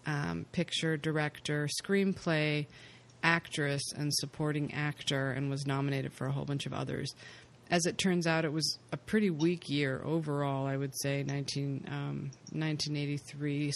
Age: 30-49